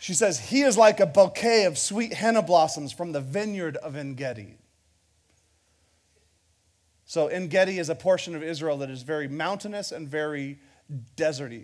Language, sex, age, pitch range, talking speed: English, male, 30-49, 135-220 Hz, 155 wpm